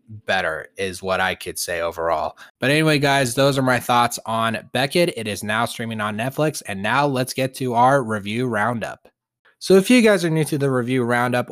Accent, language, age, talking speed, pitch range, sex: American, English, 20-39, 210 wpm, 115-145 Hz, male